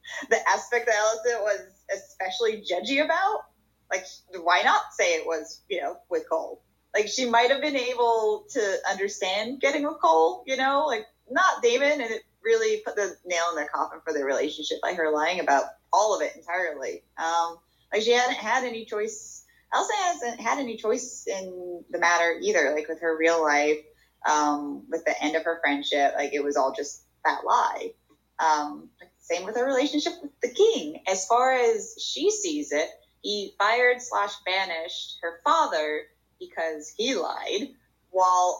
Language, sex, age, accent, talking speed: English, female, 20-39, American, 175 wpm